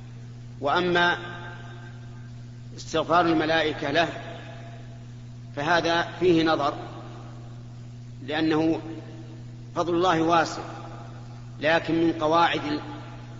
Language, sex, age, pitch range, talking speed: Arabic, male, 40-59, 120-160 Hz, 65 wpm